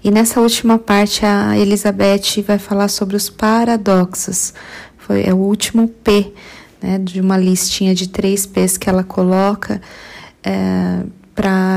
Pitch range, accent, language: 185-210 Hz, Brazilian, Portuguese